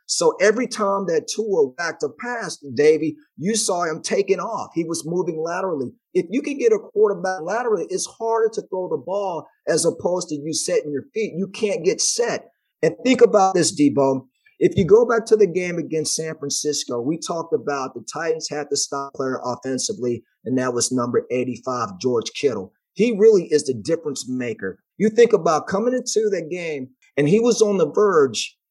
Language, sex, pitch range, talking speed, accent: English, male, 145-215 Hz, 195 wpm, American